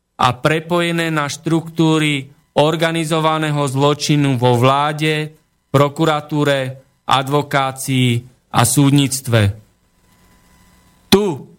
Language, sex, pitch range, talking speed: Slovak, male, 130-155 Hz, 65 wpm